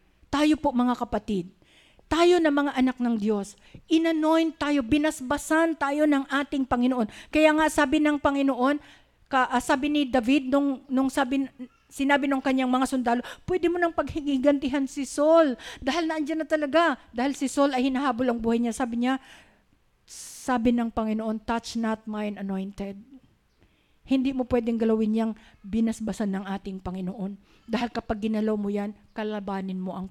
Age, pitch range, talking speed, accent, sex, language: 50-69, 220-290 Hz, 155 wpm, Filipino, female, English